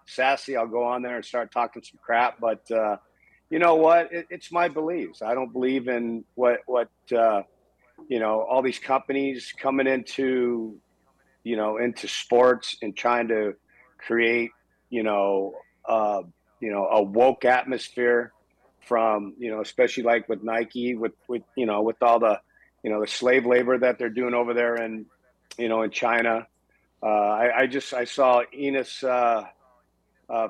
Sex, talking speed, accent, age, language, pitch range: male, 170 wpm, American, 40-59, English, 110-130 Hz